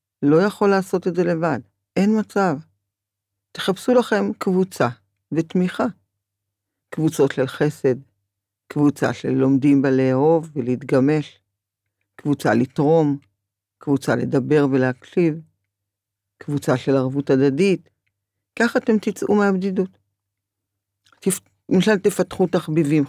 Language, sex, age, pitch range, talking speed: Hebrew, female, 50-69, 100-165 Hz, 95 wpm